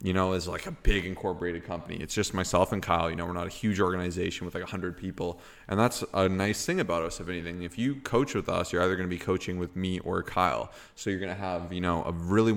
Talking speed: 270 wpm